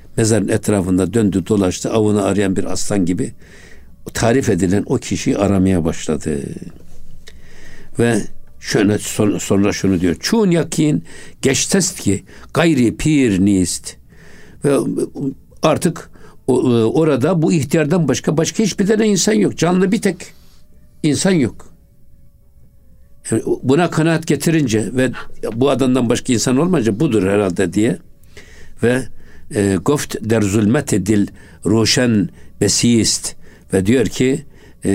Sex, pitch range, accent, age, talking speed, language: male, 95-125 Hz, native, 60-79, 100 wpm, Turkish